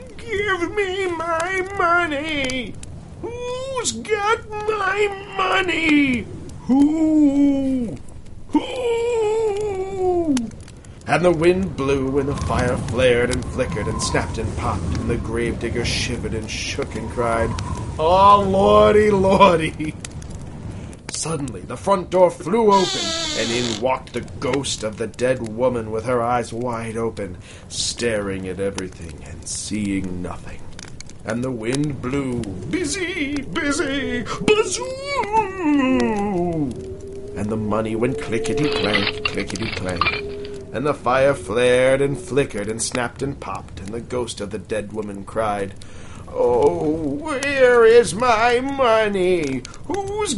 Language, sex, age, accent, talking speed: English, male, 40-59, American, 115 wpm